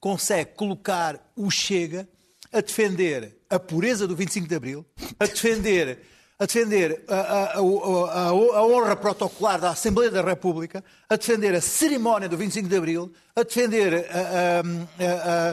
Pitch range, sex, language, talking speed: 160-210 Hz, male, Portuguese, 130 wpm